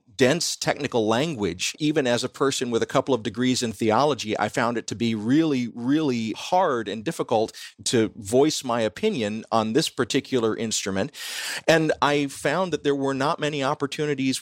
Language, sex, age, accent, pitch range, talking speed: English, male, 40-59, American, 110-140 Hz, 170 wpm